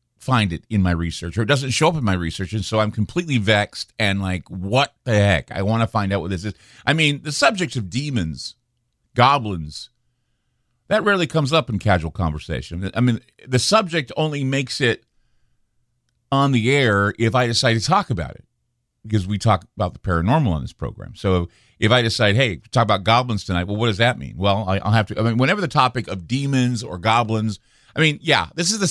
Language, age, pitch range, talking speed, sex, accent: English, 50-69, 105-130 Hz, 215 wpm, male, American